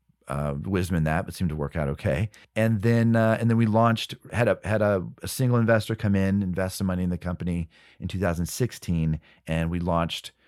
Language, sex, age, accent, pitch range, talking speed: English, male, 40-59, American, 85-115 Hz, 220 wpm